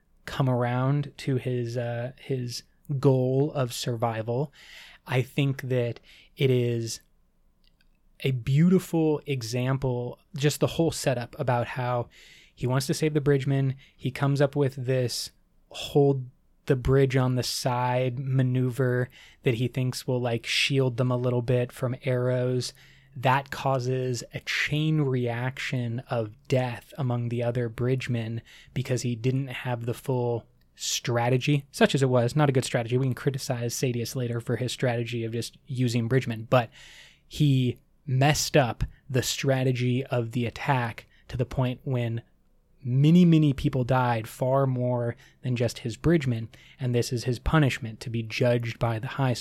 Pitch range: 120-135 Hz